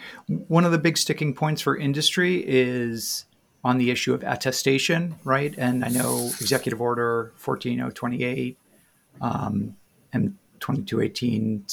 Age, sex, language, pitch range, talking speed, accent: 40-59, male, English, 105-150 Hz, 115 wpm, American